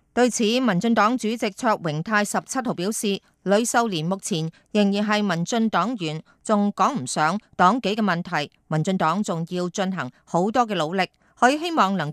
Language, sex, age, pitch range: Chinese, female, 30-49, 170-225 Hz